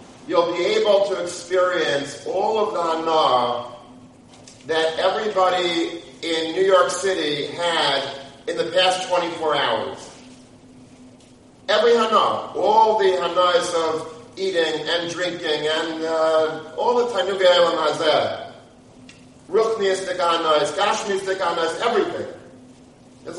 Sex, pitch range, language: male, 145-185 Hz, English